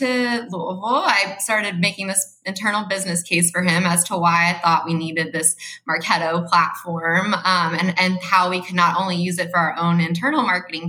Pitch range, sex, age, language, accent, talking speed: 170-195 Hz, female, 20-39, English, American, 200 wpm